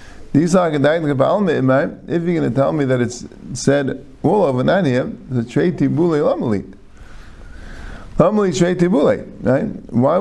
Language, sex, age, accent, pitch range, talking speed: English, male, 50-69, American, 105-150 Hz, 120 wpm